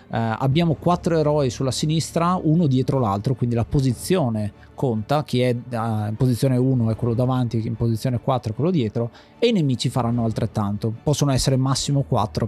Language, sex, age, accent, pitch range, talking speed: Italian, male, 20-39, native, 120-150 Hz, 190 wpm